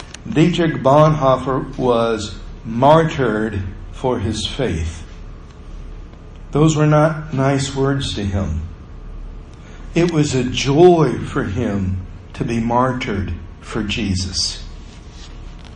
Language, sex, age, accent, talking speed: English, male, 60-79, American, 95 wpm